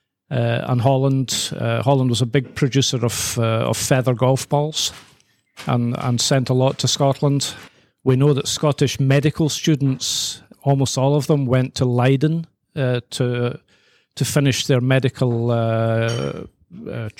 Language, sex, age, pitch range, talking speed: English, male, 40-59, 125-145 Hz, 150 wpm